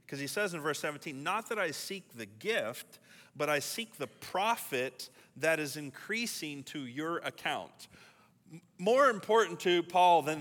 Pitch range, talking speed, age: 120-170 Hz, 160 wpm, 40-59